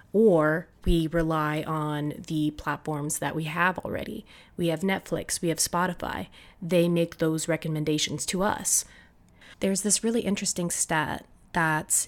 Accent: American